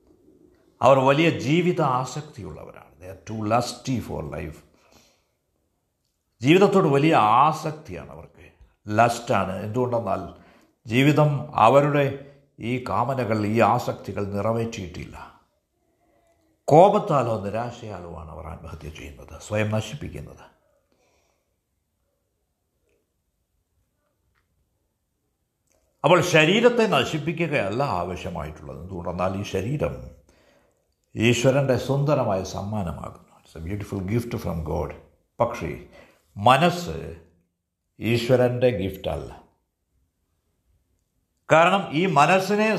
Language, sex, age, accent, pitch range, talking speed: Malayalam, male, 60-79, native, 85-145 Hz, 70 wpm